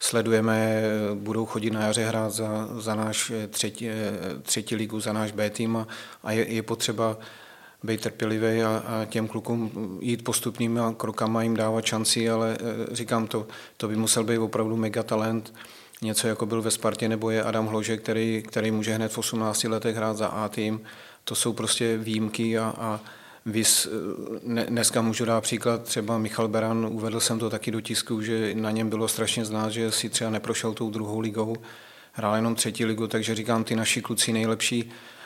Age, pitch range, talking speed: 40-59, 110-115 Hz, 180 wpm